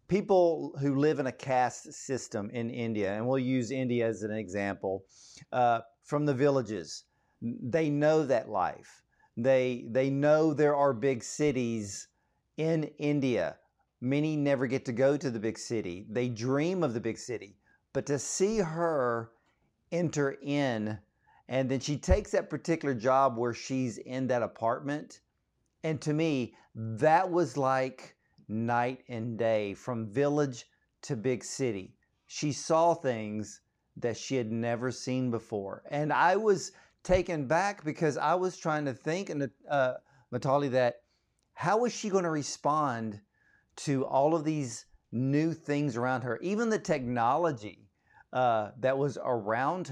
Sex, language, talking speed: male, English, 150 wpm